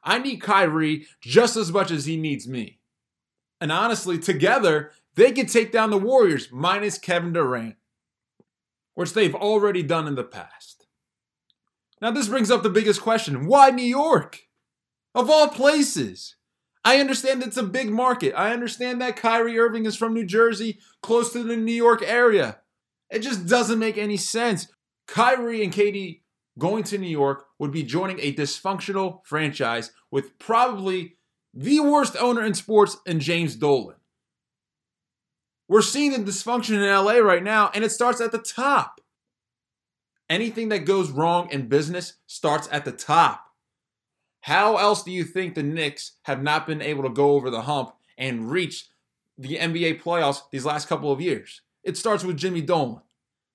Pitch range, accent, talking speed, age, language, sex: 150-230 Hz, American, 165 wpm, 20-39, English, male